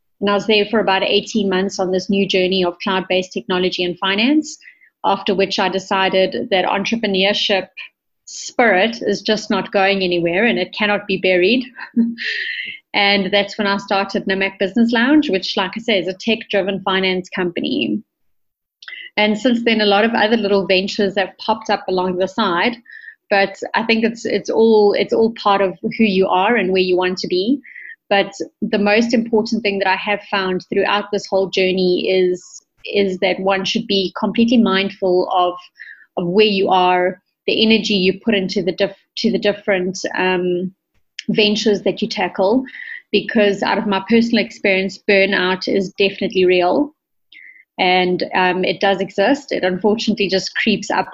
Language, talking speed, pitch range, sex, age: English, 170 wpm, 190-220 Hz, female, 30-49